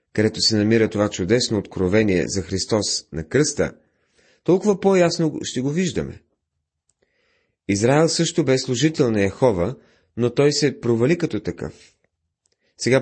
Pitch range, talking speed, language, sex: 95-145 Hz, 130 wpm, Bulgarian, male